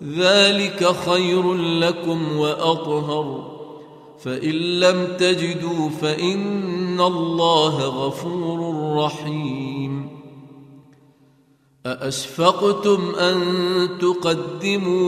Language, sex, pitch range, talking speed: Arabic, male, 150-180 Hz, 55 wpm